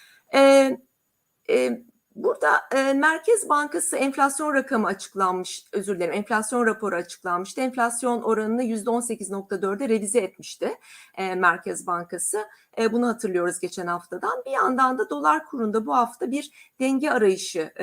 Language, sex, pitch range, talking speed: Turkish, female, 190-260 Hz, 130 wpm